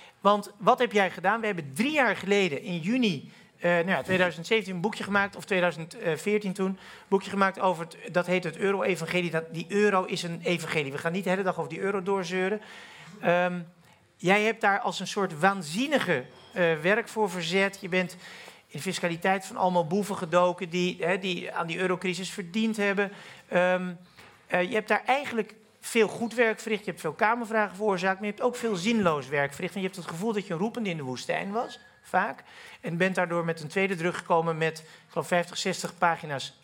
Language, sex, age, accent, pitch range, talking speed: Dutch, male, 40-59, Dutch, 165-205 Hz, 205 wpm